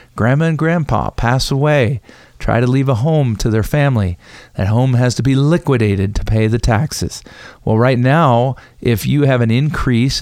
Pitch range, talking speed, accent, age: 115-145 Hz, 180 wpm, American, 40-59